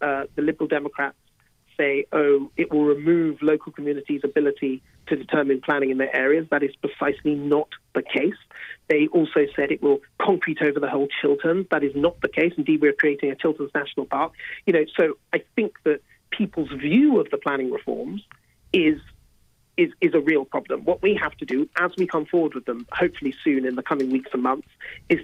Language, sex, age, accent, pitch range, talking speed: English, male, 40-59, British, 145-185 Hz, 200 wpm